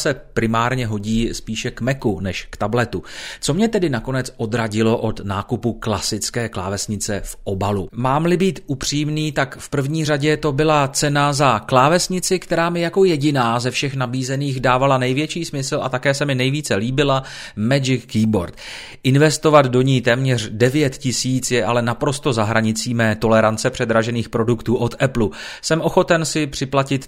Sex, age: male, 30-49